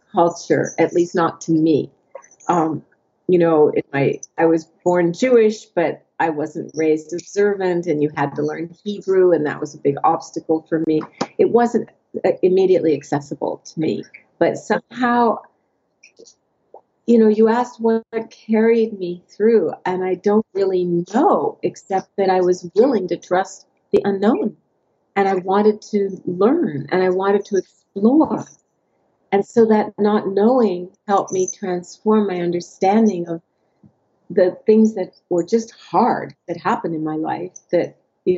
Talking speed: 155 wpm